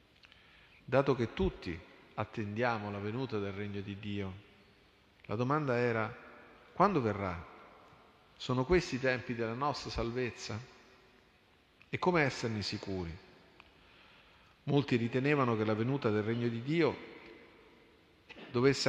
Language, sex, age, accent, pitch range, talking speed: Italian, male, 40-59, native, 105-125 Hz, 115 wpm